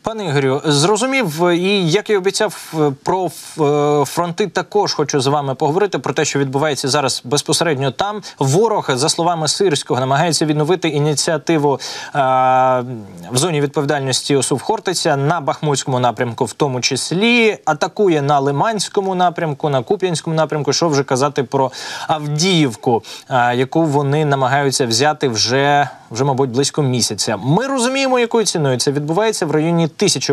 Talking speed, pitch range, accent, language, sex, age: 140 wpm, 135-180 Hz, native, Ukrainian, male, 20-39